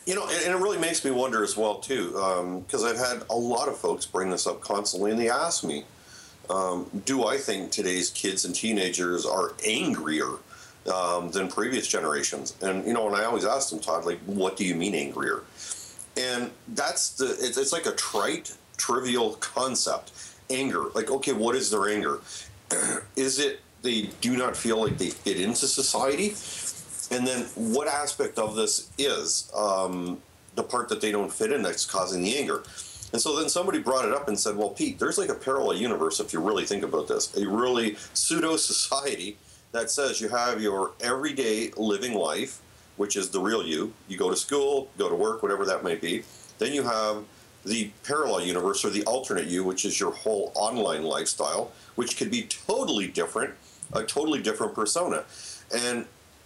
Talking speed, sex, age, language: 190 wpm, male, 40-59, English